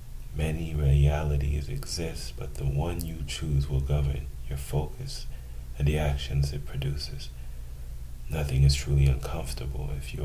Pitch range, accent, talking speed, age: 65-75 Hz, American, 135 wpm, 40-59